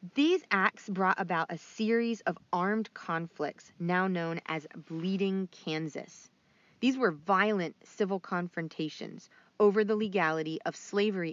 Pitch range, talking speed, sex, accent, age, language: 170-215 Hz, 125 wpm, female, American, 30-49, English